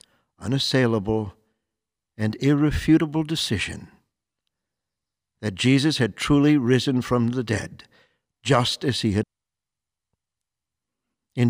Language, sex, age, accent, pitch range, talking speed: English, male, 60-79, American, 100-145 Hz, 90 wpm